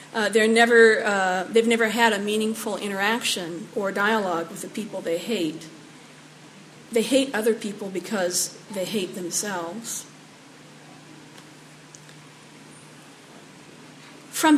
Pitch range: 195-240 Hz